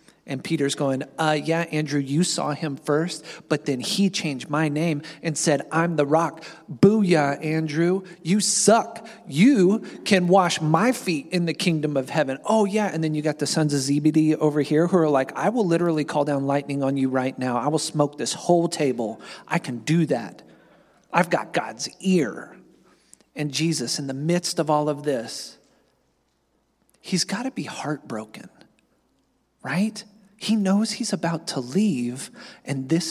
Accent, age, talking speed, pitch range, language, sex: American, 40-59, 175 wpm, 150-200 Hz, English, male